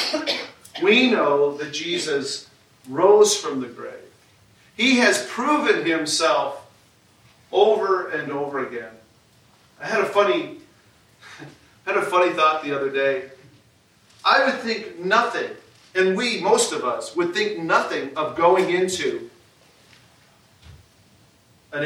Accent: American